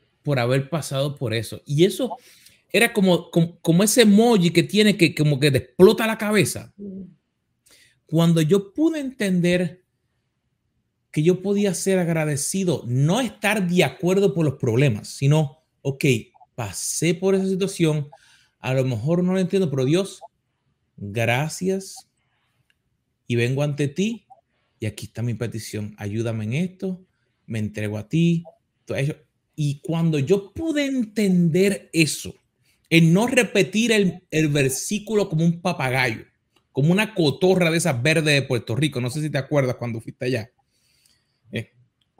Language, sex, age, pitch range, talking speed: Spanish, male, 30-49, 130-190 Hz, 150 wpm